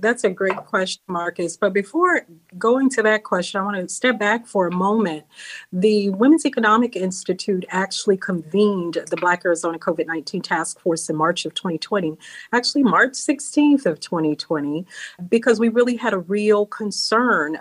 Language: English